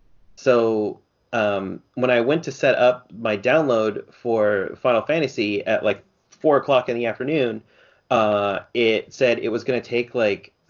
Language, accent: English, American